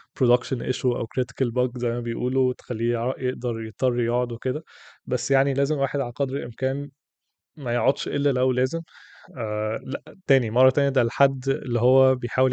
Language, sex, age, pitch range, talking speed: Arabic, male, 20-39, 115-130 Hz, 165 wpm